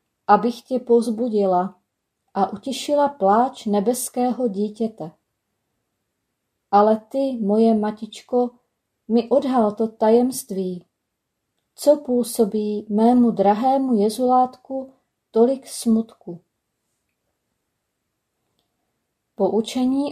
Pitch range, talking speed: 205-245 Hz, 70 wpm